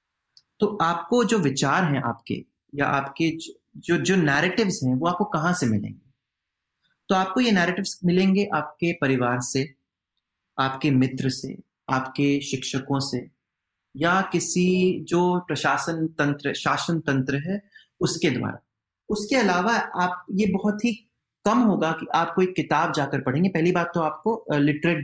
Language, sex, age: Hindi, male, 30-49